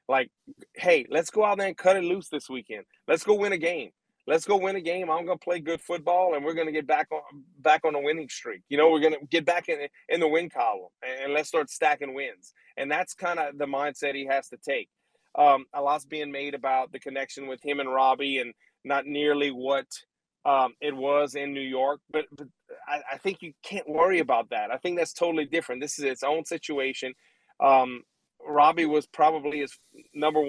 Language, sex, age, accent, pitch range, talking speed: English, male, 30-49, American, 140-165 Hz, 225 wpm